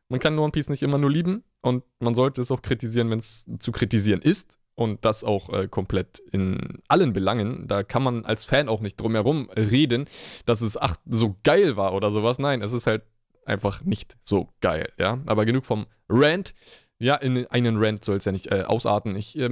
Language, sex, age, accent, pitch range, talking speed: German, male, 20-39, German, 105-130 Hz, 210 wpm